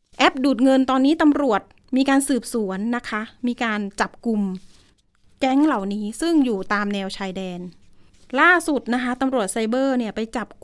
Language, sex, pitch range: Thai, female, 215-275 Hz